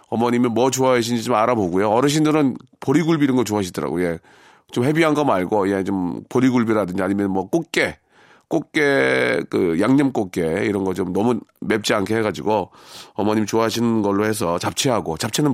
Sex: male